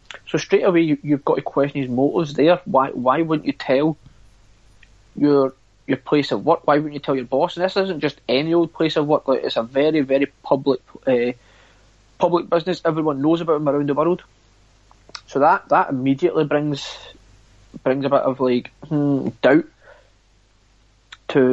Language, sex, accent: English, male, British